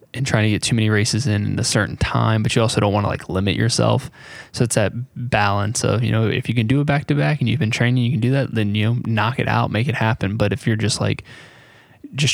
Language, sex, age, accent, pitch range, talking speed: English, male, 20-39, American, 105-130 Hz, 280 wpm